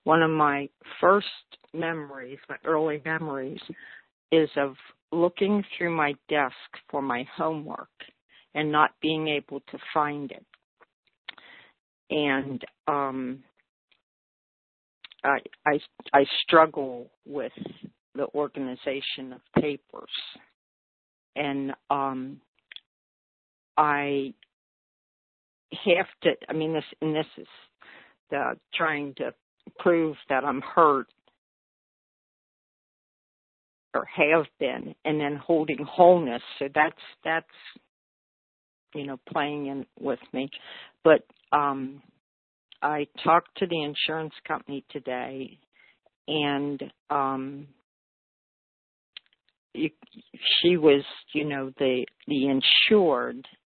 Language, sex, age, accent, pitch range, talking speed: English, female, 50-69, American, 135-155 Hz, 95 wpm